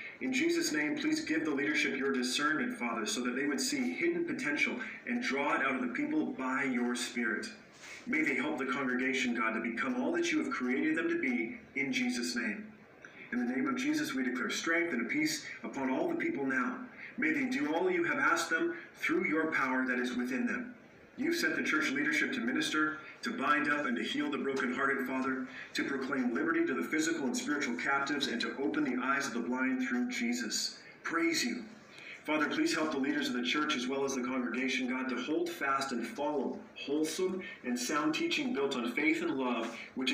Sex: male